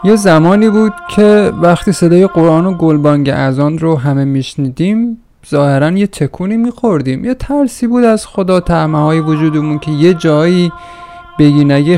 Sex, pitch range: male, 145-200 Hz